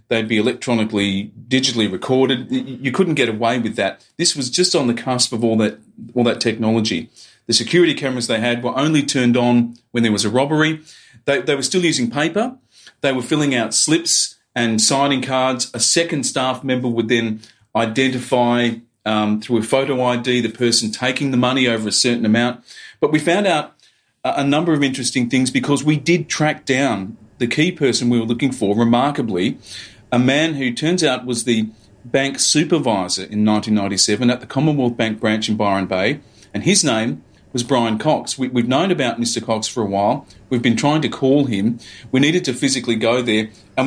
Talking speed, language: 190 wpm, English